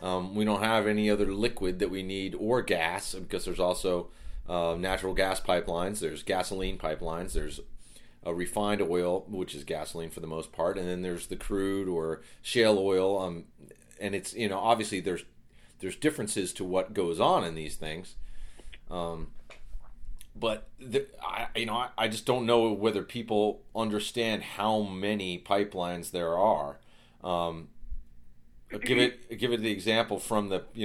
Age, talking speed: 30-49, 165 wpm